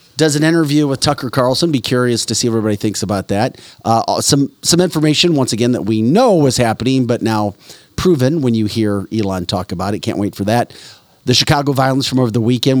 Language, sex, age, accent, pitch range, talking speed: English, male, 40-59, American, 105-140 Hz, 215 wpm